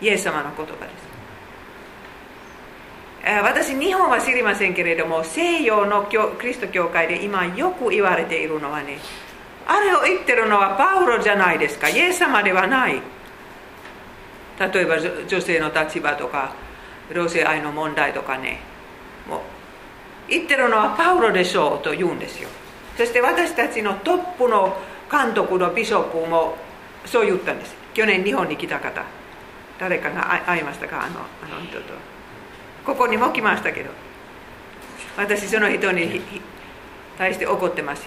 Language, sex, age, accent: Japanese, female, 50-69, Finnish